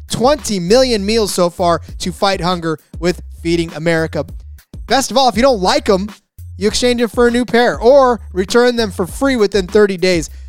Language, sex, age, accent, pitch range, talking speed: English, male, 20-39, American, 155-220 Hz, 195 wpm